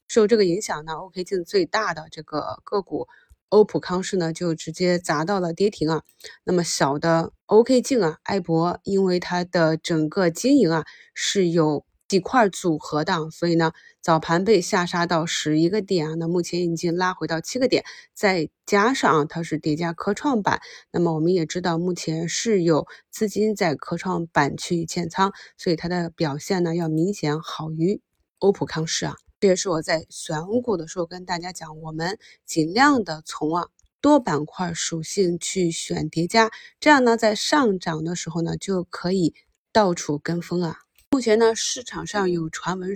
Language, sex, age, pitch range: Chinese, female, 20-39, 165-200 Hz